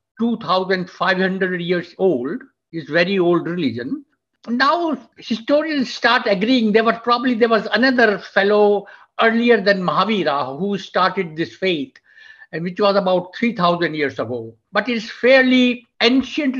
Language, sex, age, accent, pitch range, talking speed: English, male, 60-79, Indian, 190-245 Hz, 125 wpm